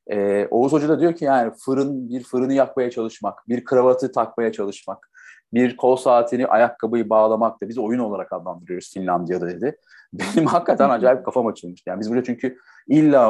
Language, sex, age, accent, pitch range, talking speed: Turkish, male, 40-59, native, 105-135 Hz, 165 wpm